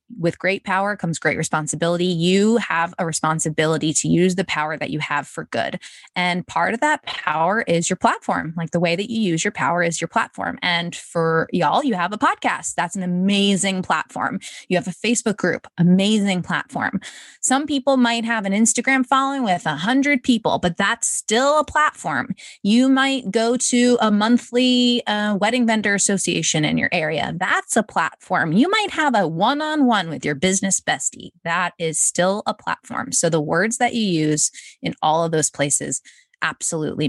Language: English